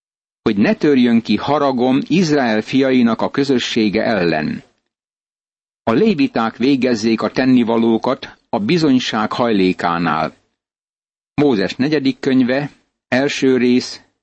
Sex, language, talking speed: male, Hungarian, 95 wpm